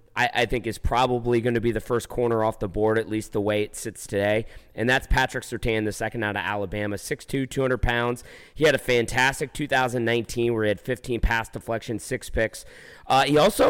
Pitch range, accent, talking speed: 110-130 Hz, American, 215 wpm